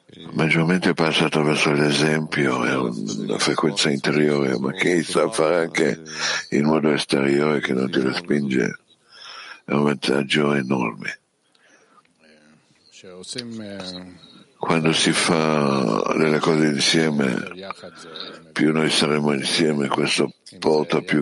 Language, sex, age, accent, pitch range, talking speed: Italian, male, 60-79, native, 70-80 Hz, 105 wpm